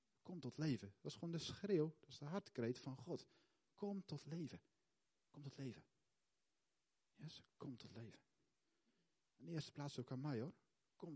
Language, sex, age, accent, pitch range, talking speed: Dutch, male, 40-59, Dutch, 140-195 Hz, 175 wpm